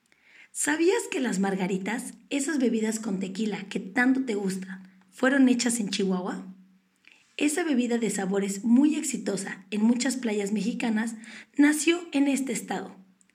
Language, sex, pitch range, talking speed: Spanish, female, 200-260 Hz, 135 wpm